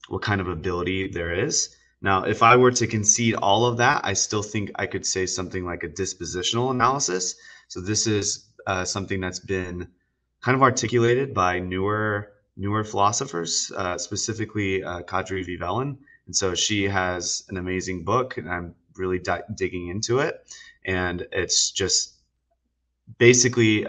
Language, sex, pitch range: English, male, 90-105 Hz